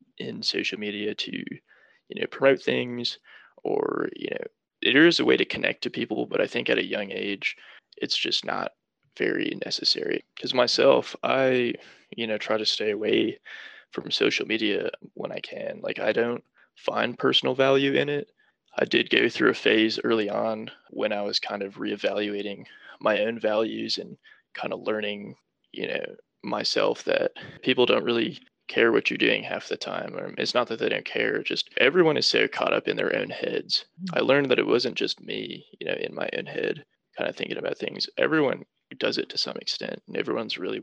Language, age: English, 20-39